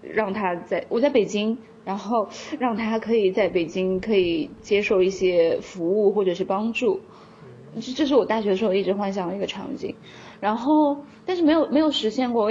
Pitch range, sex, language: 205-280 Hz, female, Chinese